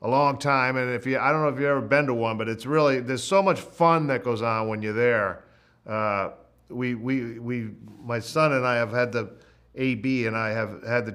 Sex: male